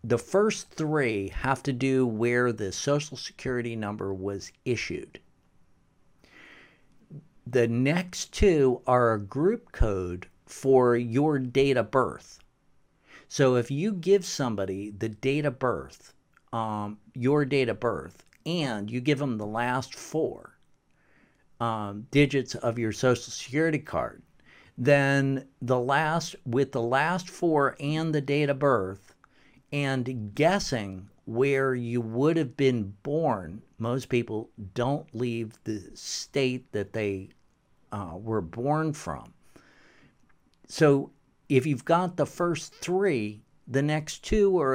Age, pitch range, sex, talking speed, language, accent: 50-69, 110-145 Hz, male, 130 wpm, English, American